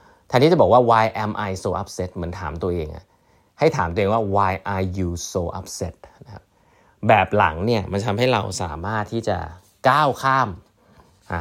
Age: 20-39